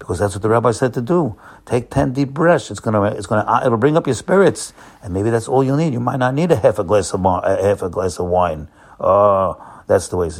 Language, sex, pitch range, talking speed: English, male, 105-145 Hz, 260 wpm